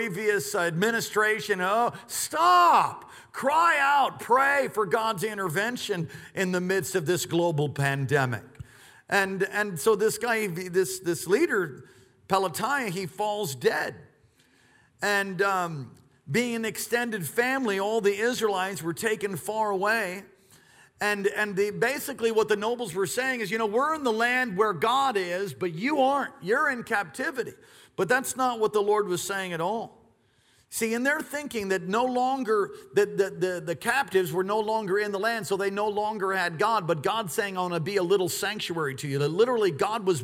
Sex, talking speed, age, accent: male, 175 wpm, 50-69, American